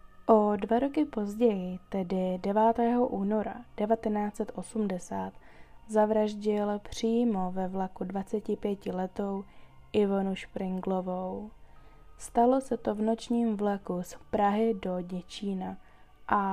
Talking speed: 95 wpm